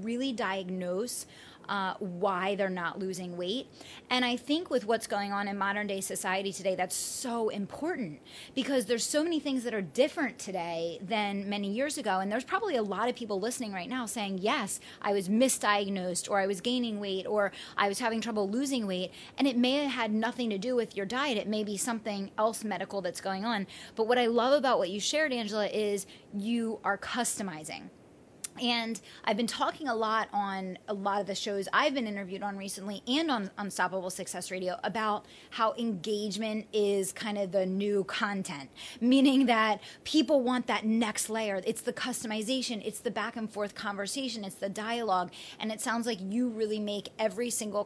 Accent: American